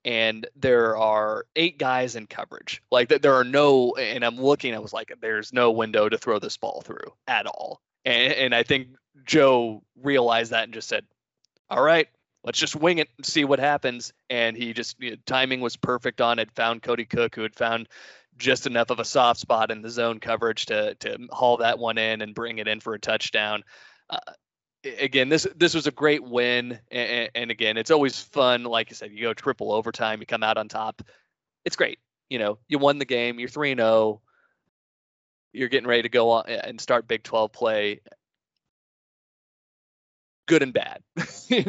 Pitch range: 110-130 Hz